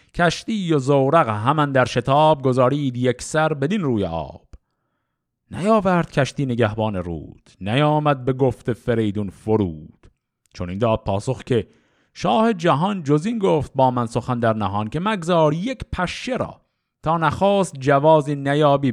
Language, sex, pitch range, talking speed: Persian, male, 110-155 Hz, 140 wpm